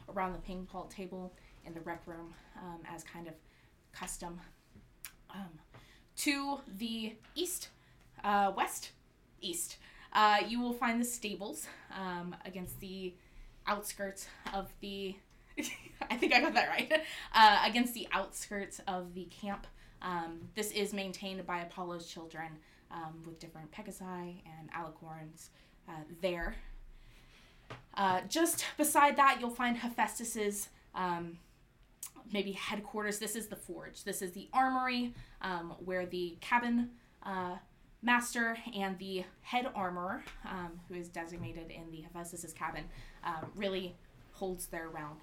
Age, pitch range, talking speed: 20-39, 170-220 Hz, 135 wpm